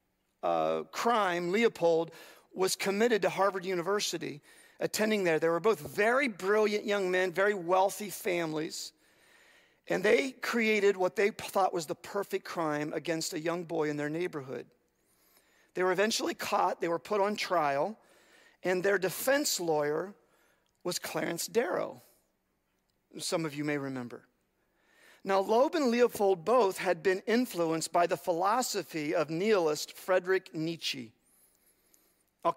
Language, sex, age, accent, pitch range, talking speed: English, male, 50-69, American, 175-225 Hz, 135 wpm